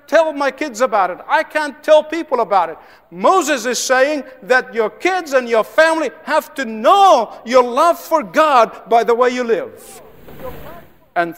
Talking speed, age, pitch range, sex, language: 175 wpm, 50-69, 225-310 Hz, male, English